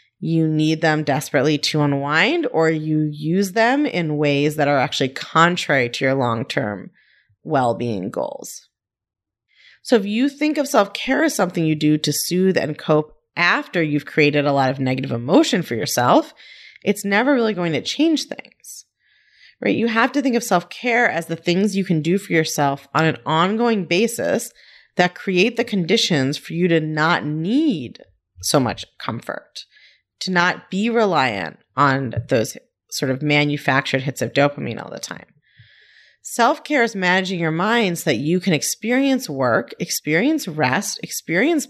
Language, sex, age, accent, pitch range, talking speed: English, female, 30-49, American, 150-225 Hz, 160 wpm